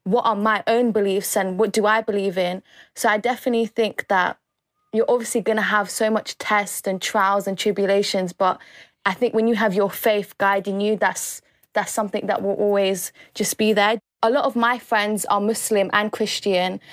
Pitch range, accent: 205-235 Hz, British